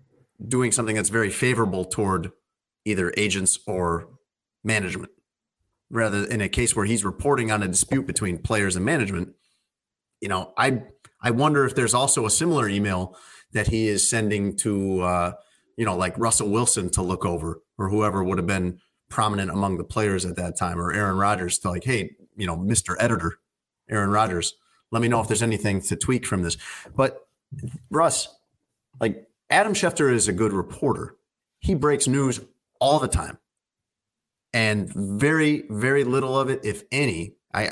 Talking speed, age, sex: 170 wpm, 30-49, male